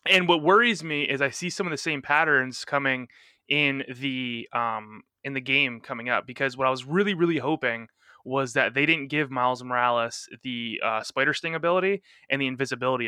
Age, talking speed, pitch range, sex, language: 20-39, 195 wpm, 125-165 Hz, male, English